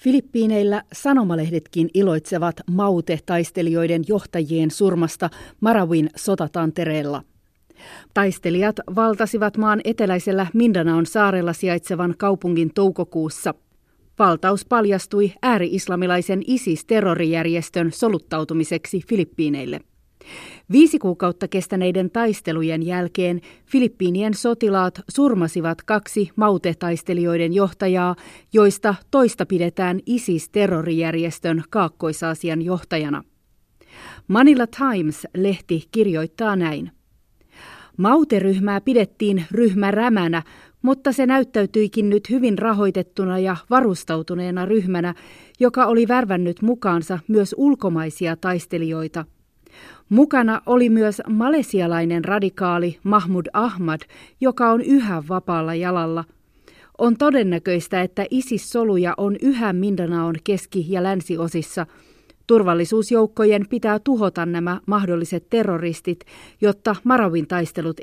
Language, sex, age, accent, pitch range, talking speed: Finnish, female, 30-49, native, 170-215 Hz, 85 wpm